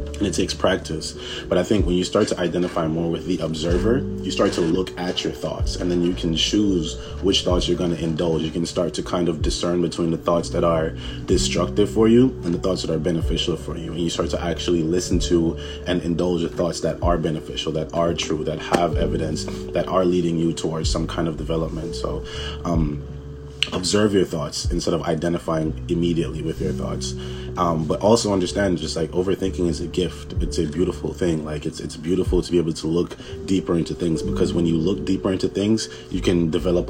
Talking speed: 220 wpm